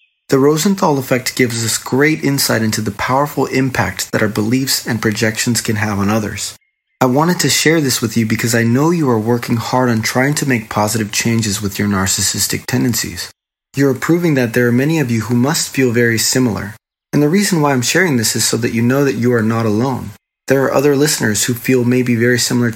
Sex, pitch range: male, 110-135 Hz